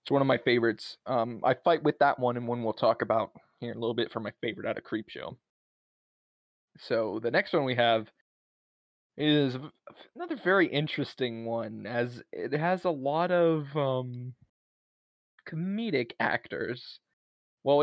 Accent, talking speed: American, 160 wpm